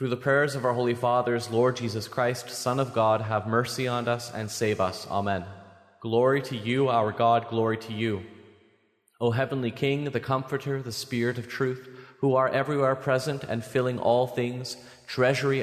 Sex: male